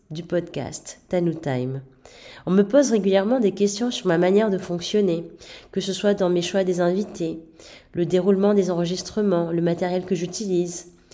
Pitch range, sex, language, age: 170-210 Hz, female, French, 30-49